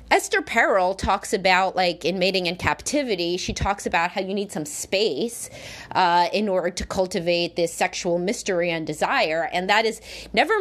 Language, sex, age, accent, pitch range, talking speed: English, female, 30-49, American, 180-230 Hz, 175 wpm